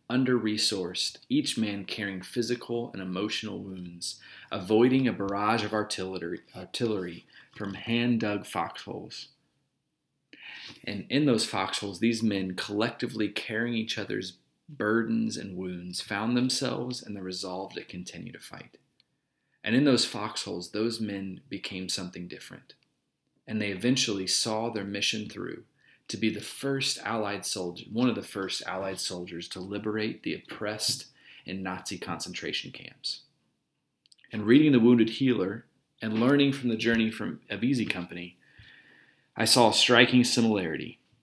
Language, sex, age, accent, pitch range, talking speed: English, male, 30-49, American, 95-120 Hz, 135 wpm